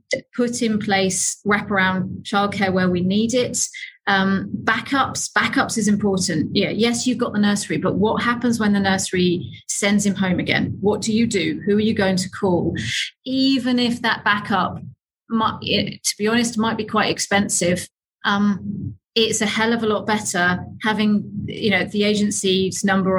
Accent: British